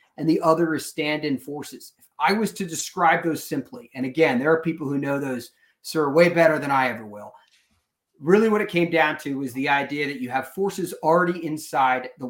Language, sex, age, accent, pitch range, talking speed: English, male, 30-49, American, 140-175 Hz, 215 wpm